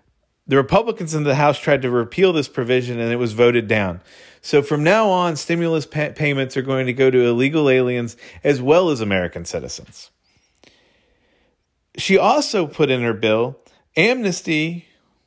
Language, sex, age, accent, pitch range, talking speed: English, male, 40-59, American, 120-170 Hz, 155 wpm